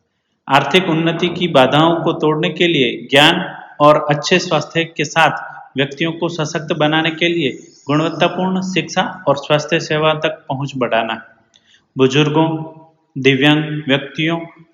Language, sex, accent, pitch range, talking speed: Hindi, male, native, 140-165 Hz, 125 wpm